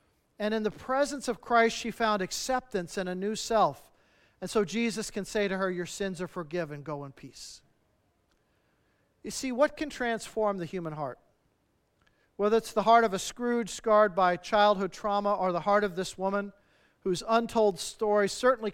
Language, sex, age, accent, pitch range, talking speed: English, male, 50-69, American, 175-220 Hz, 180 wpm